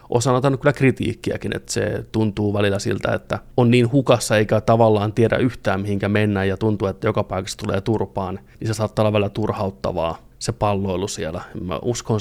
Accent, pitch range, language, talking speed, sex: native, 95-120 Hz, Finnish, 175 wpm, male